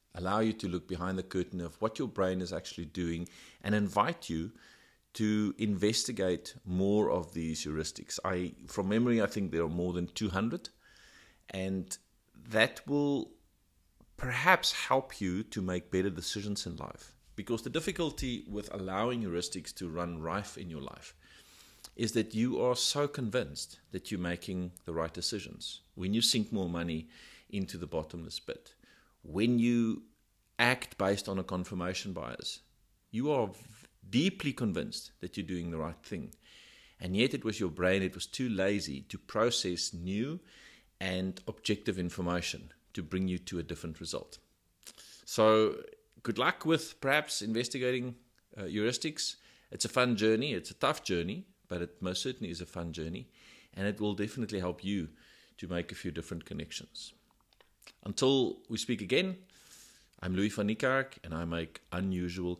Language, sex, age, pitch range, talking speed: English, male, 50-69, 85-110 Hz, 160 wpm